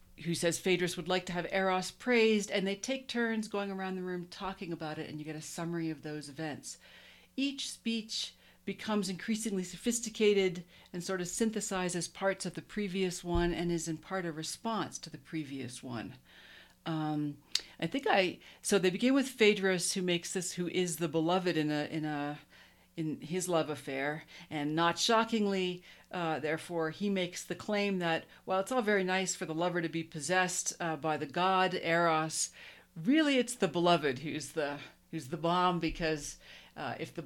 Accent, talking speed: American, 185 wpm